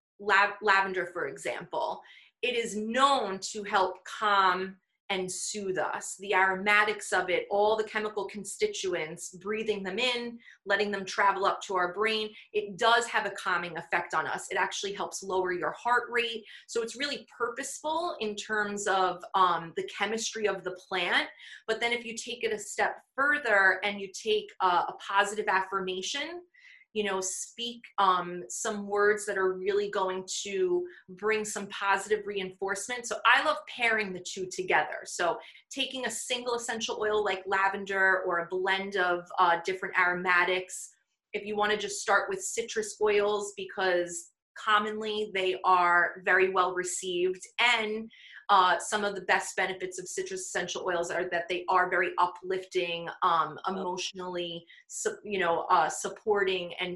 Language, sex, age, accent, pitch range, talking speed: English, female, 30-49, American, 185-220 Hz, 160 wpm